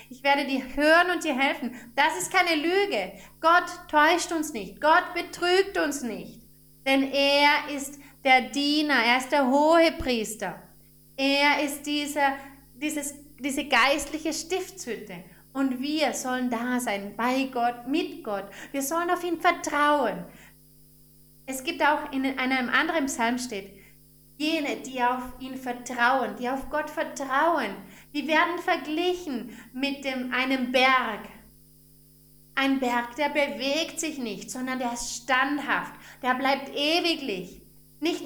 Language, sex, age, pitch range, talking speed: German, female, 30-49, 255-315 Hz, 140 wpm